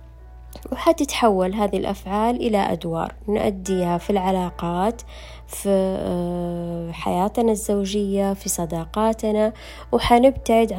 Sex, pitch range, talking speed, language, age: female, 175-220 Hz, 80 wpm, Arabic, 20-39